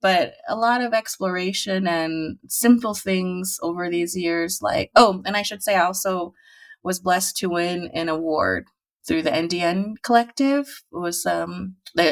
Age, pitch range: 30-49, 165-195 Hz